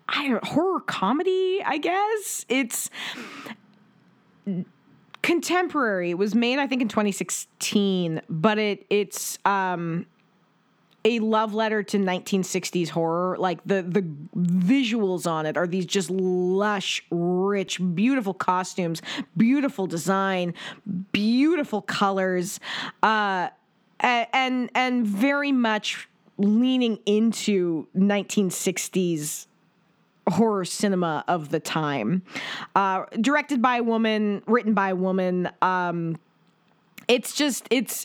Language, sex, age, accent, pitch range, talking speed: English, female, 20-39, American, 180-230 Hz, 105 wpm